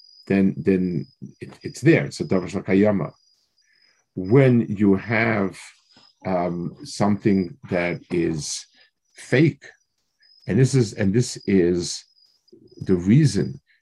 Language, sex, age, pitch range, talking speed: English, male, 50-69, 100-135 Hz, 105 wpm